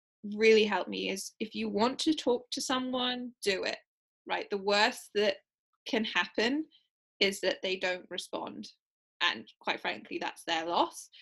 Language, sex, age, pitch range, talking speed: English, female, 10-29, 195-240 Hz, 160 wpm